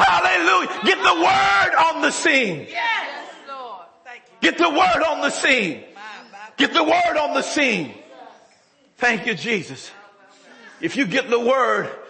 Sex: male